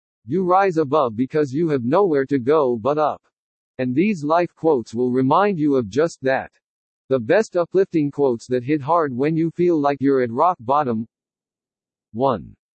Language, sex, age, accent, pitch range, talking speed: English, male, 60-79, American, 130-170 Hz, 175 wpm